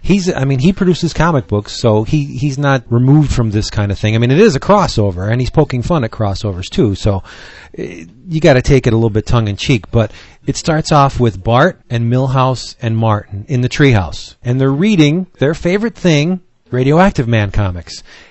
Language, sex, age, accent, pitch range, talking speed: English, male, 40-59, American, 115-145 Hz, 205 wpm